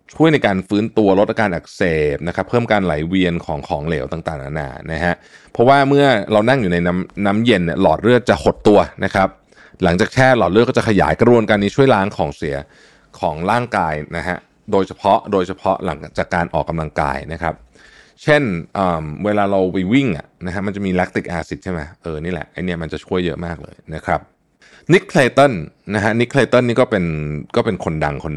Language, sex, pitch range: Thai, male, 85-115 Hz